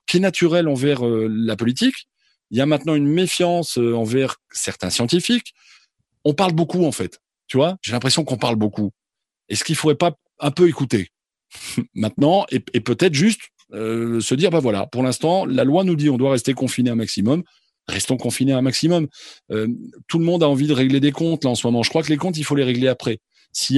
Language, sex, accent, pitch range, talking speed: French, male, French, 115-150 Hz, 210 wpm